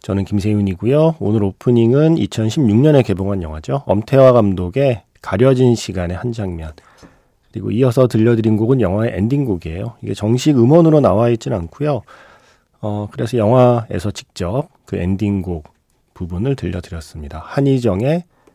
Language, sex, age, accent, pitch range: Korean, male, 40-59, native, 95-135 Hz